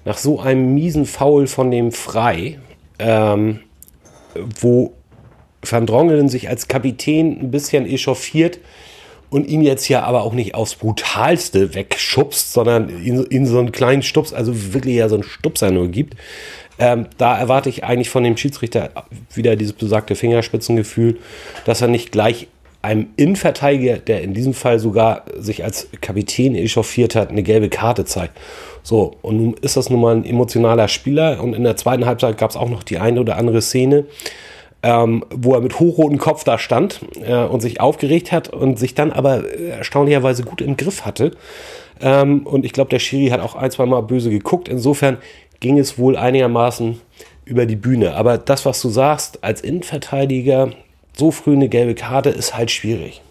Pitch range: 115-140 Hz